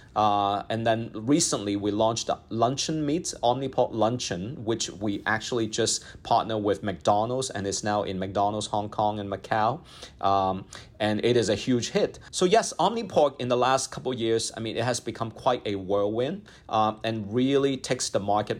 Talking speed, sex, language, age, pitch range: 180 wpm, male, English, 40-59, 105-130 Hz